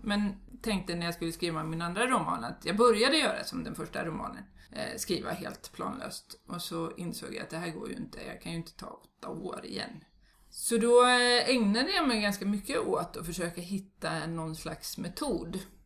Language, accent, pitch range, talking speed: Swedish, native, 170-225 Hz, 195 wpm